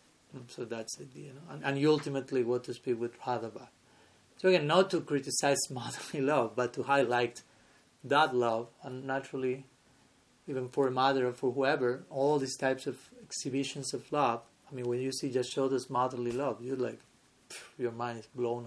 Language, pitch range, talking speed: English, 130-170 Hz, 180 wpm